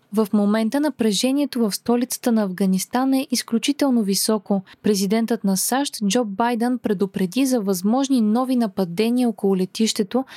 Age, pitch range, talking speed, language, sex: 20-39, 200-250 Hz, 125 wpm, Bulgarian, female